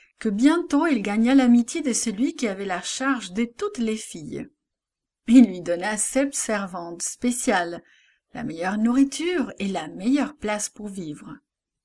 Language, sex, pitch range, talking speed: English, female, 195-270 Hz, 150 wpm